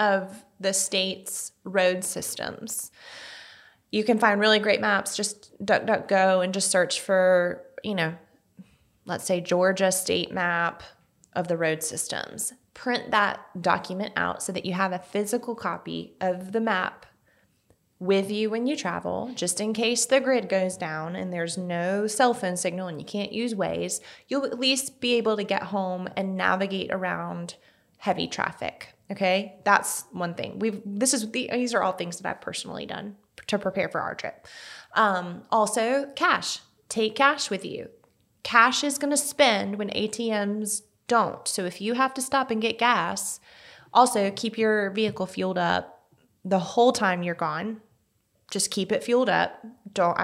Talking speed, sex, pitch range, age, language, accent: 170 wpm, female, 185-230 Hz, 20-39, English, American